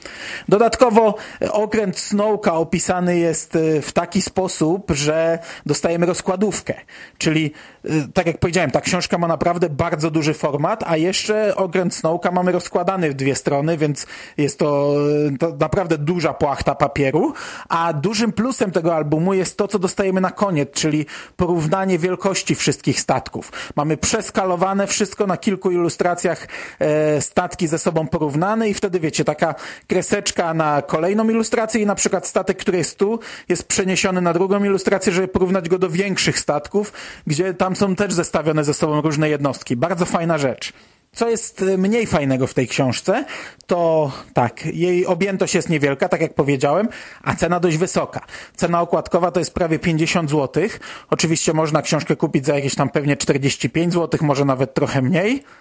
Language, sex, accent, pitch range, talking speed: Polish, male, native, 155-195 Hz, 155 wpm